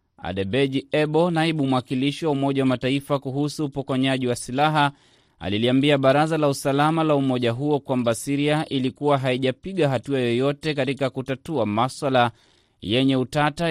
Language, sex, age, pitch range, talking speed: Swahili, male, 30-49, 125-150 Hz, 125 wpm